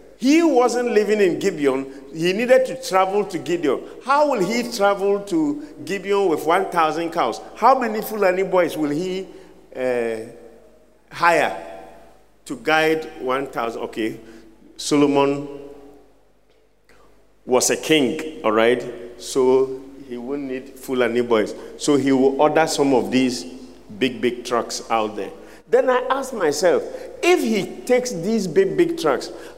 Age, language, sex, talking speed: 50-69, English, male, 135 wpm